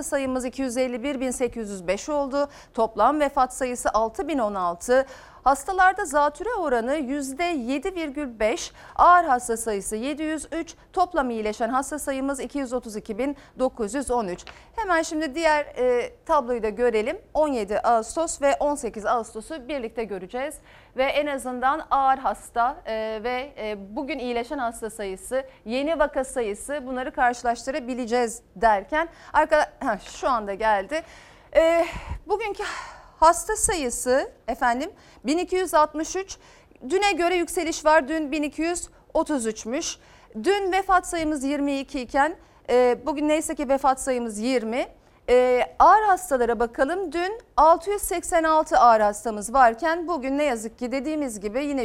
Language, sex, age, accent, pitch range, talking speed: Turkish, female, 40-59, native, 240-330 Hz, 110 wpm